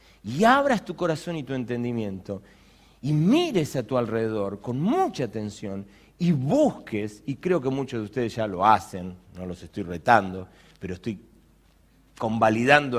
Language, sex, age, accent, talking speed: Spanish, male, 40-59, Argentinian, 150 wpm